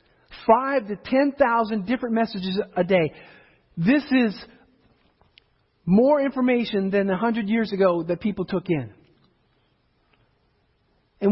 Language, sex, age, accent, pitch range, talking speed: English, male, 40-59, American, 215-275 Hz, 105 wpm